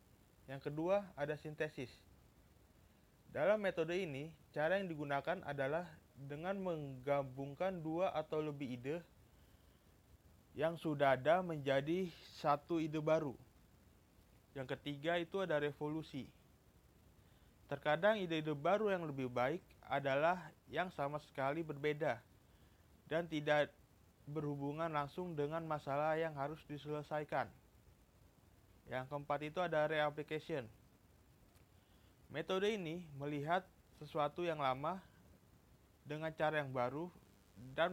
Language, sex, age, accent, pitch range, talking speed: Indonesian, male, 30-49, native, 130-160 Hz, 105 wpm